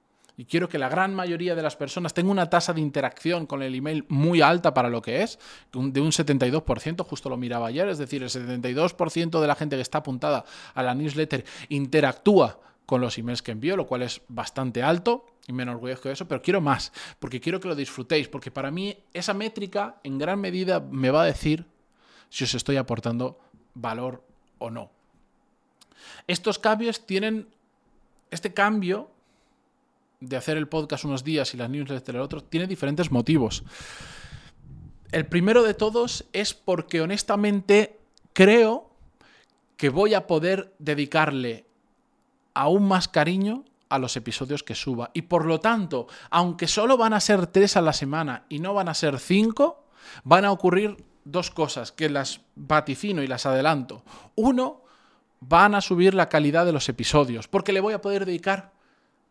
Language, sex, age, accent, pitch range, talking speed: Spanish, male, 20-39, Spanish, 135-195 Hz, 175 wpm